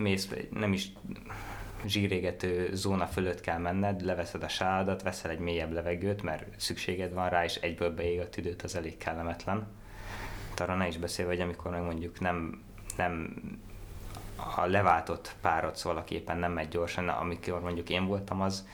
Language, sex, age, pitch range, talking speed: Hungarian, male, 20-39, 85-100 Hz, 160 wpm